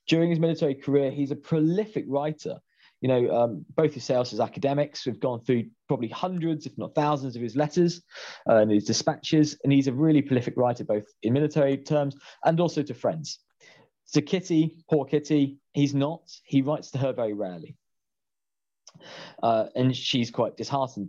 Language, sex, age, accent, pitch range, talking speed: English, male, 20-39, British, 120-150 Hz, 175 wpm